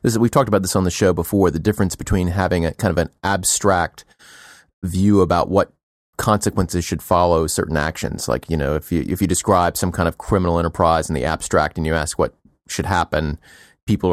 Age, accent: 30-49, American